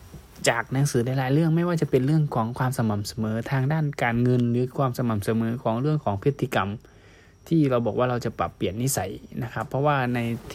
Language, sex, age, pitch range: Thai, male, 20-39, 110-135 Hz